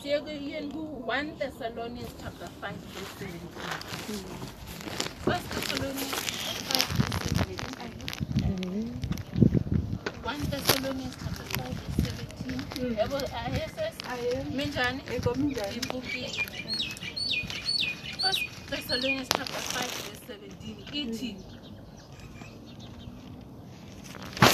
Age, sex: 30-49, female